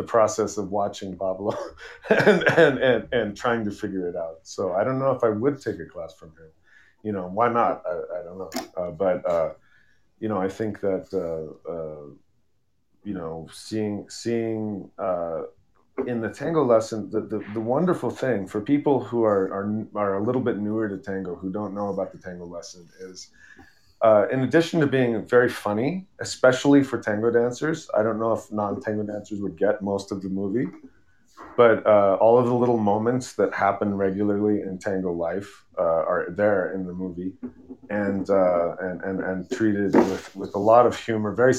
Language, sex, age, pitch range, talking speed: English, male, 30-49, 95-120 Hz, 190 wpm